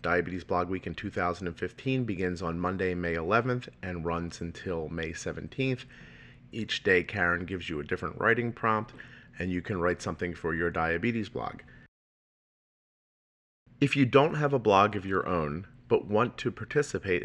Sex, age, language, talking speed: male, 40-59, English, 160 wpm